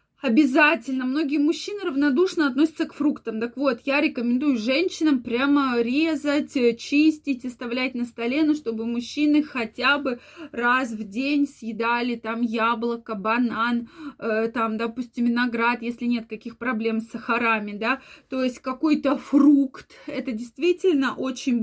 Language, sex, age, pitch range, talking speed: Russian, female, 20-39, 235-290 Hz, 130 wpm